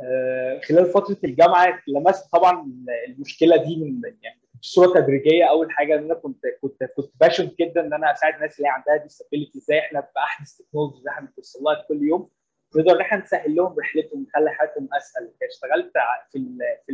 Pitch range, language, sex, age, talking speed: 150-245 Hz, Arabic, male, 20-39, 160 wpm